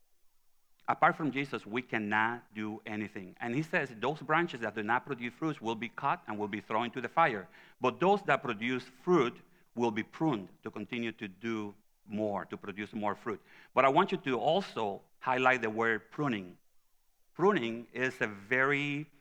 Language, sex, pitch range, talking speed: English, male, 105-130 Hz, 170 wpm